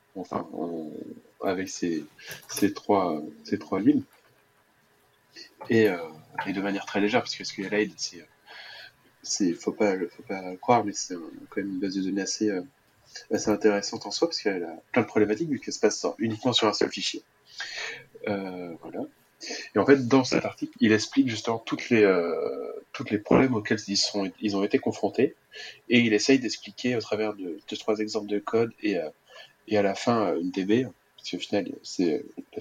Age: 20-39